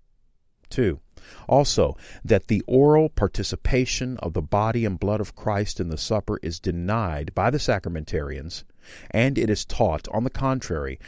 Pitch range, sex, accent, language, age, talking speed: 90-120 Hz, male, American, English, 40-59, 150 wpm